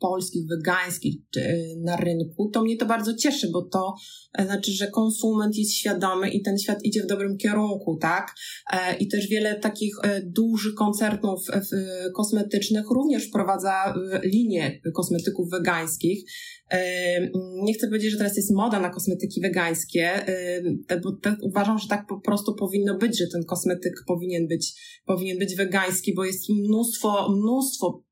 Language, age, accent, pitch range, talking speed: Polish, 20-39, native, 190-225 Hz, 140 wpm